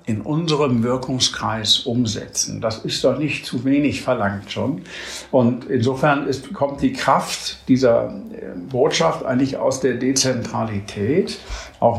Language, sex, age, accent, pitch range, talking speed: German, male, 60-79, German, 115-135 Hz, 125 wpm